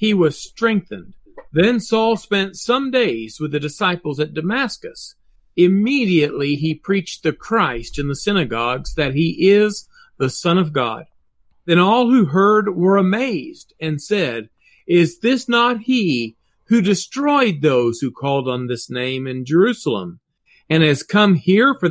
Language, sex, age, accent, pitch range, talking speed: English, male, 50-69, American, 140-205 Hz, 150 wpm